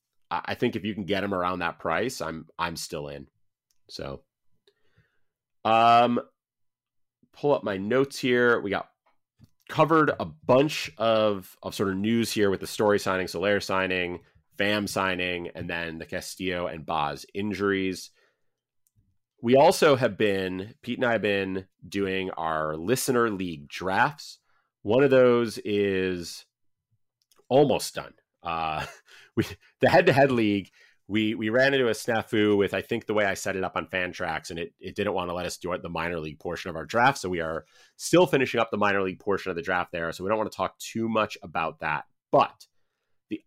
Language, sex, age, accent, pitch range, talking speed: English, male, 30-49, American, 90-115 Hz, 185 wpm